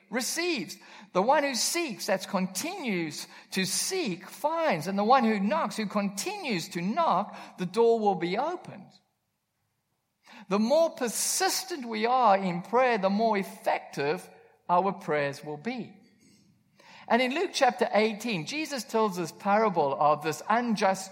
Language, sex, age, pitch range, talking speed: English, male, 50-69, 185-250 Hz, 140 wpm